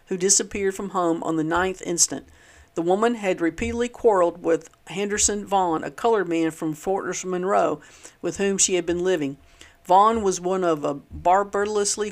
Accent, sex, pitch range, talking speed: American, female, 165-195 Hz, 170 wpm